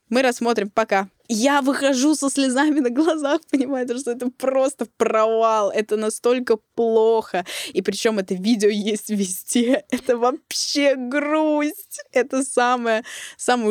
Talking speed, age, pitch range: 125 wpm, 20-39, 185-255 Hz